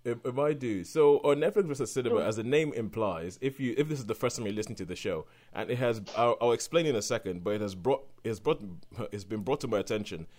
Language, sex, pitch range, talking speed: English, male, 100-130 Hz, 275 wpm